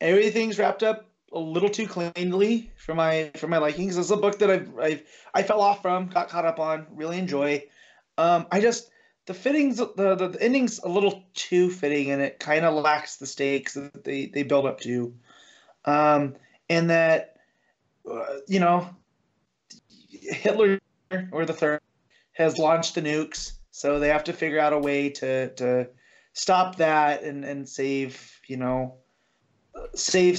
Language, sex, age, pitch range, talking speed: English, male, 30-49, 140-175 Hz, 170 wpm